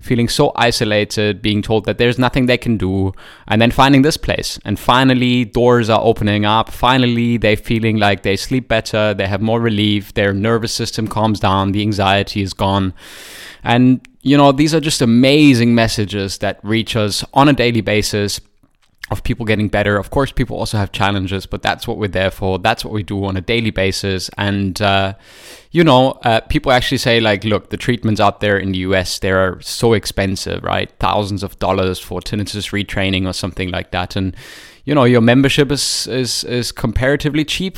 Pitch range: 95-120 Hz